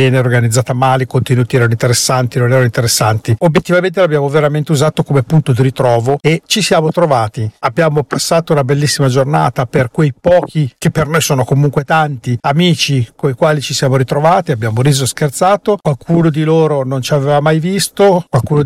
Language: Italian